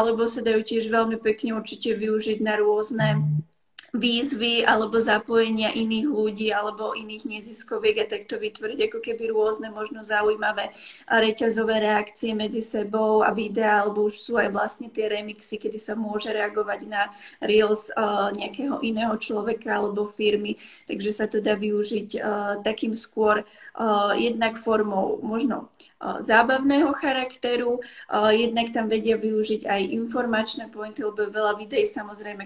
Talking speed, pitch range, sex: 140 wpm, 210-230 Hz, female